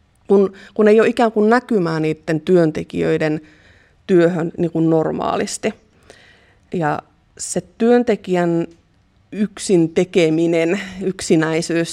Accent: native